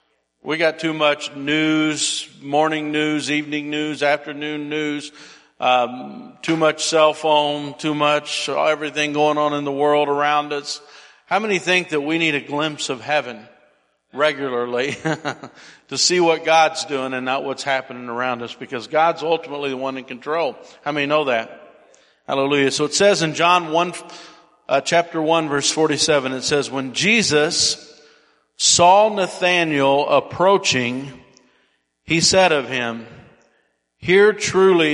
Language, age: English, 50-69